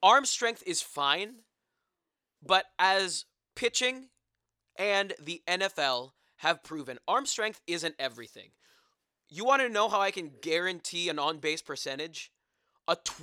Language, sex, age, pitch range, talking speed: English, male, 20-39, 145-200 Hz, 125 wpm